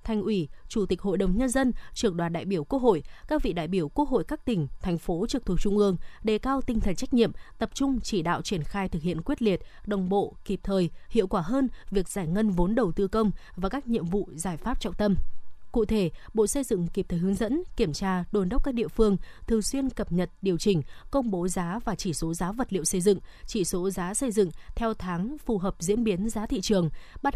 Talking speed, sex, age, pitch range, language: 250 wpm, female, 20-39, 185-230 Hz, Vietnamese